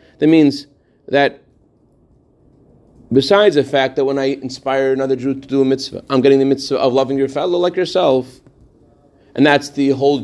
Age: 40-59